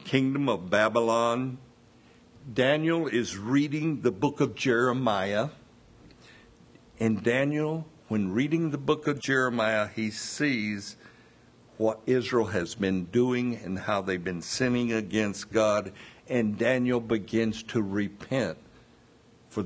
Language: English